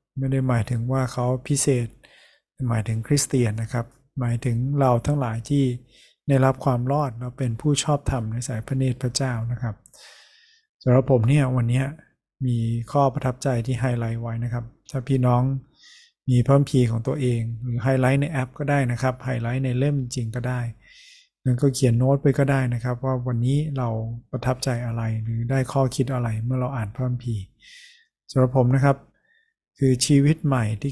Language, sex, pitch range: Thai, male, 120-135 Hz